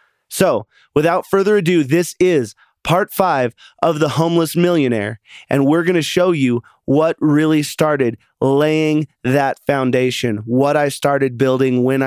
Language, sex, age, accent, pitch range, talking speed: English, male, 30-49, American, 120-145 Hz, 145 wpm